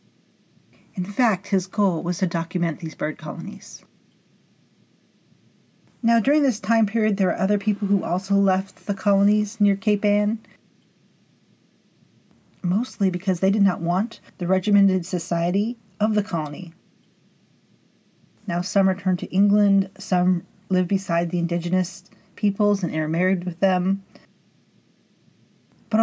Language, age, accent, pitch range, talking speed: English, 40-59, American, 180-205 Hz, 125 wpm